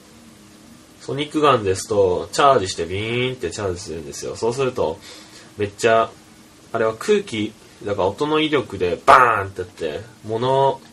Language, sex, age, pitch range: Japanese, male, 20-39, 100-135 Hz